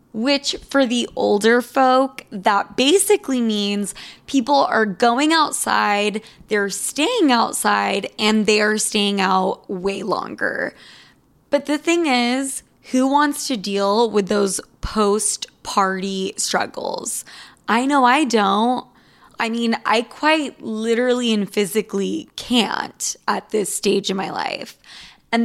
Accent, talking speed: American, 125 wpm